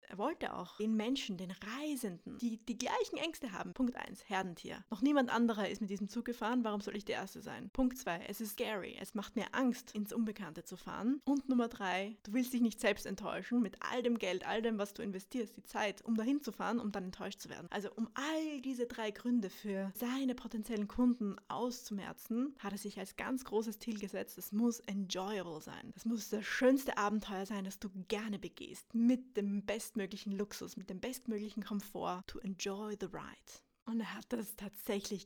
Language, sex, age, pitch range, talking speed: English, female, 20-39, 200-245 Hz, 210 wpm